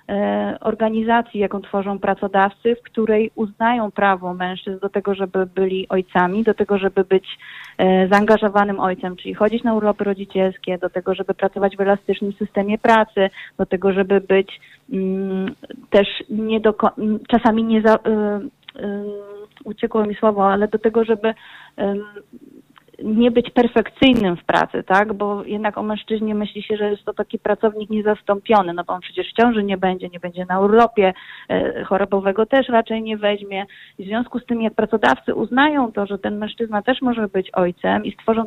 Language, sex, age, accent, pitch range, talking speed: Polish, female, 30-49, native, 195-220 Hz, 160 wpm